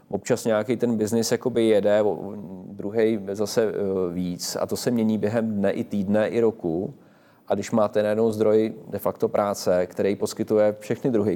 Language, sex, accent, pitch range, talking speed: Czech, male, native, 95-105 Hz, 165 wpm